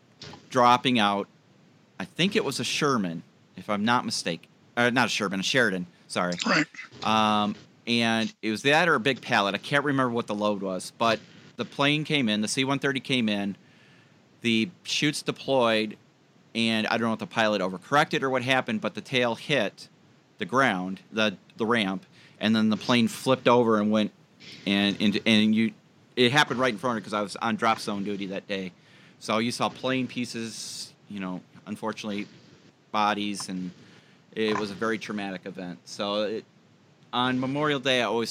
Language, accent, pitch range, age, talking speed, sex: English, American, 100-125 Hz, 40-59, 180 wpm, male